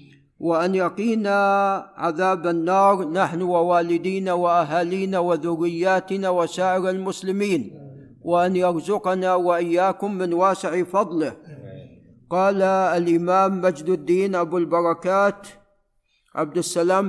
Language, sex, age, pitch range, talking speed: Arabic, male, 50-69, 165-190 Hz, 85 wpm